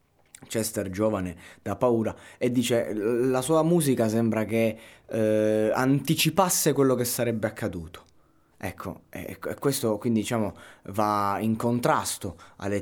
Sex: male